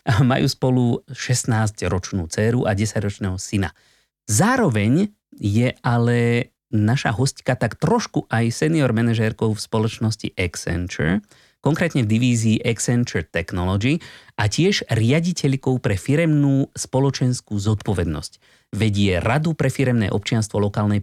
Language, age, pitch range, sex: Slovak, 30-49, 105-145 Hz, male